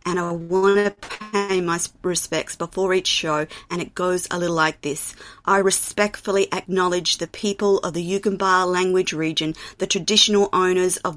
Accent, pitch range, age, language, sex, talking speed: Australian, 175-205 Hz, 30-49, English, female, 165 wpm